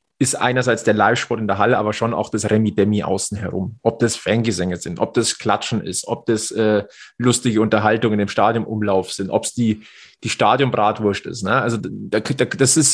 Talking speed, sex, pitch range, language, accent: 195 wpm, male, 105-125 Hz, German, German